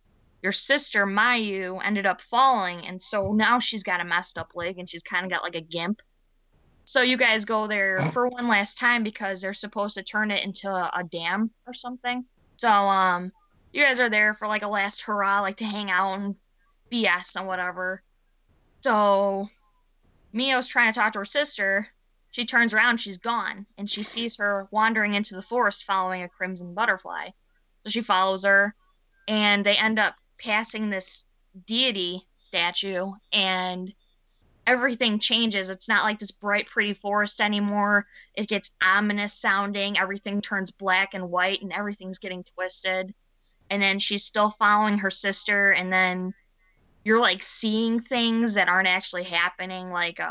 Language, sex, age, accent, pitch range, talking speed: English, female, 10-29, American, 185-215 Hz, 170 wpm